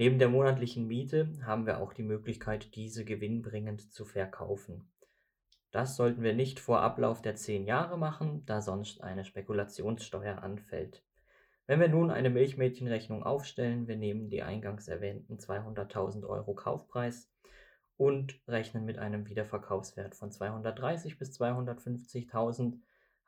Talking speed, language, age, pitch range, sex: 130 wpm, German, 20-39, 100-120 Hz, male